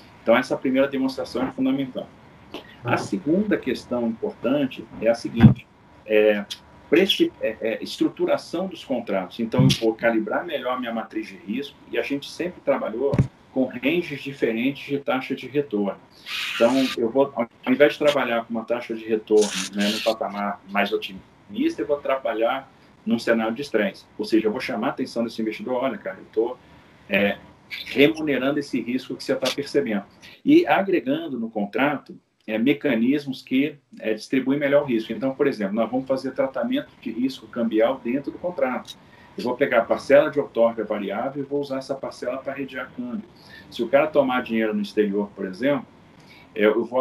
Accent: Brazilian